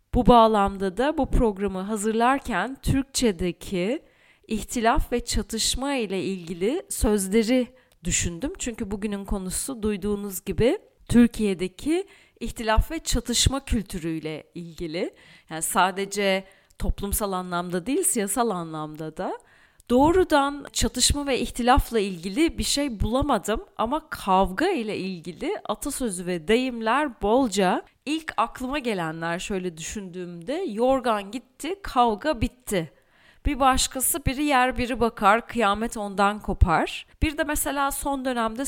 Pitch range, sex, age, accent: 195-260 Hz, female, 40-59, Turkish